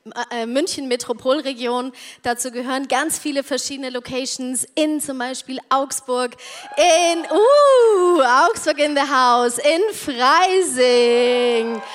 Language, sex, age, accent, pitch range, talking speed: German, female, 20-39, German, 235-295 Hz, 90 wpm